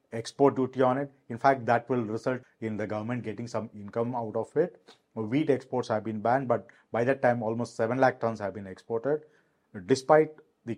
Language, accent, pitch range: English, Indian, 110-130 Hz